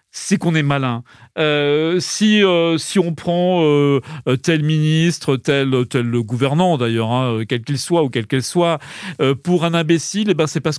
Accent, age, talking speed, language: French, 40-59, 185 wpm, French